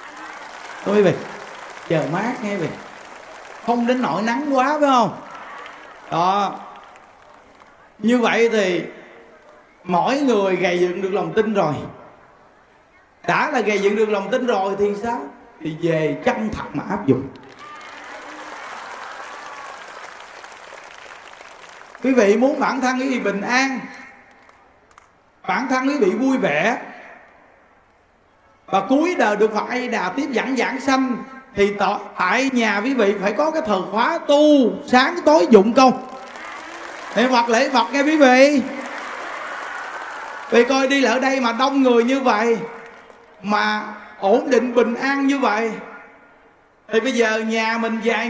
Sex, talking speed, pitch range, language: male, 145 wpm, 215-265 Hz, Vietnamese